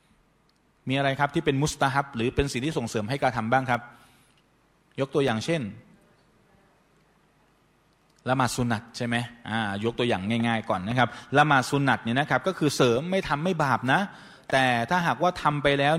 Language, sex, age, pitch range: Thai, male, 20-39, 120-150 Hz